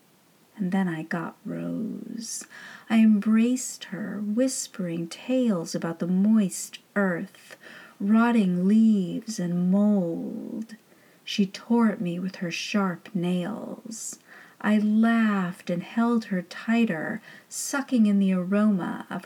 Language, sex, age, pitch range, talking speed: English, female, 40-59, 195-230 Hz, 115 wpm